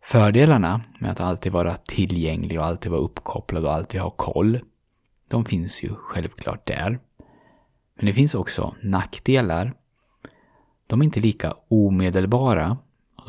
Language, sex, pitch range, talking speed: Swedish, male, 90-120 Hz, 135 wpm